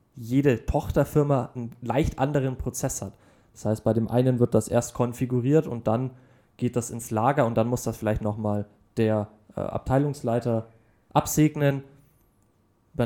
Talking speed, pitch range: 150 wpm, 115-135 Hz